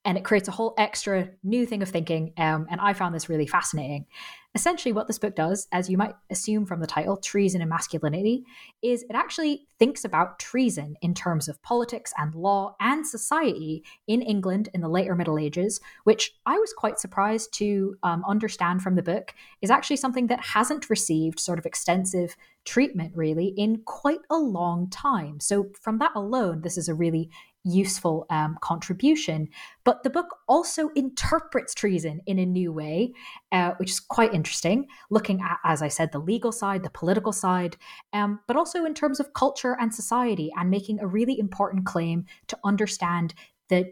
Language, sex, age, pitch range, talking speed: English, female, 20-39, 170-225 Hz, 185 wpm